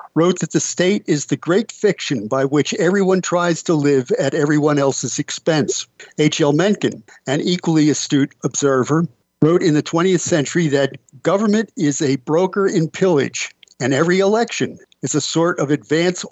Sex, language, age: male, English, 50-69